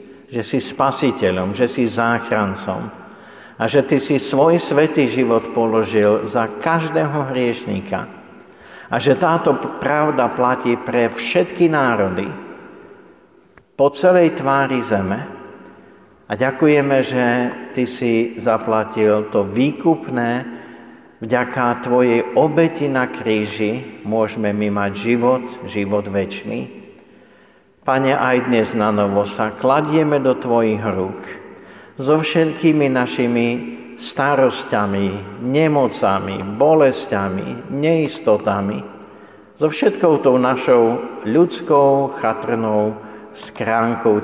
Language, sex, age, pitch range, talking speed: Slovak, male, 50-69, 105-135 Hz, 100 wpm